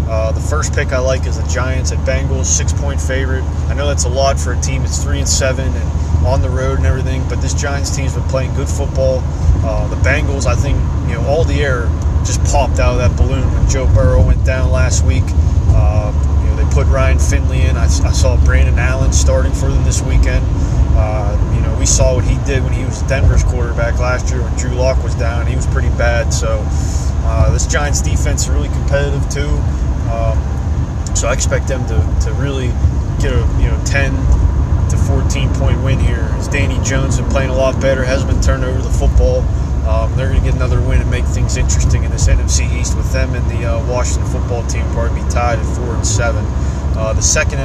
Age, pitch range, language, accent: 20-39, 70-85 Hz, English, American